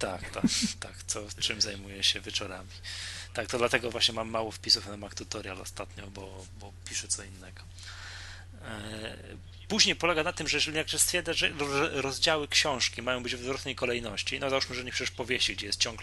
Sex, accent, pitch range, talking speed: male, native, 95-125 Hz, 185 wpm